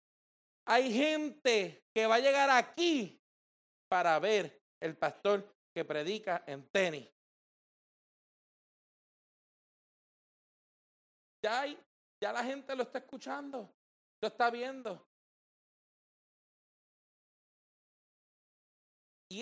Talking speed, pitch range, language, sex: 80 wpm, 175-235 Hz, Spanish, male